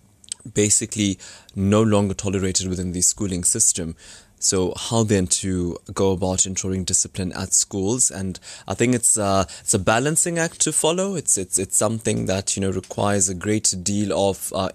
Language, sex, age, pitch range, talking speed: English, male, 20-39, 95-110 Hz, 170 wpm